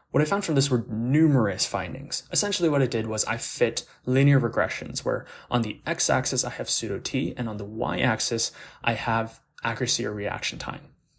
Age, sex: 20-39, male